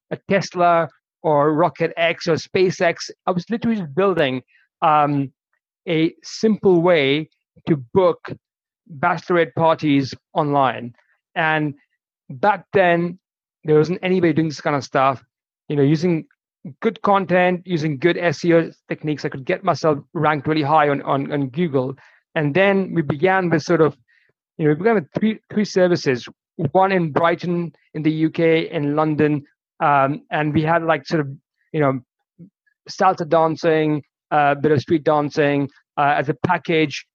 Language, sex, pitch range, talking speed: English, male, 150-180 Hz, 155 wpm